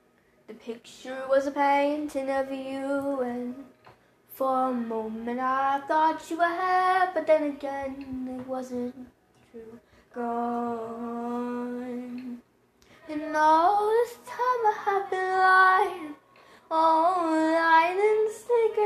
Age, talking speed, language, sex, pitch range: 10-29, 110 wpm, English, female, 280-340 Hz